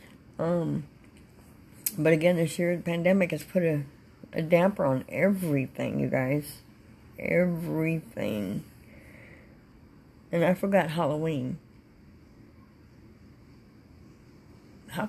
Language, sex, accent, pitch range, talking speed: English, female, American, 145-185 Hz, 90 wpm